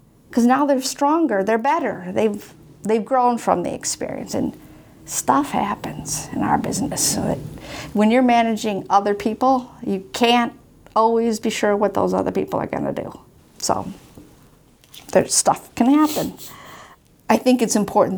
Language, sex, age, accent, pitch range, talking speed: English, female, 50-69, American, 180-230 Hz, 150 wpm